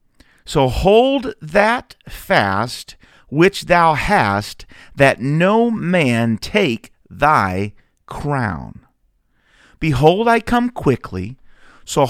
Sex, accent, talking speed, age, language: male, American, 90 wpm, 50-69, English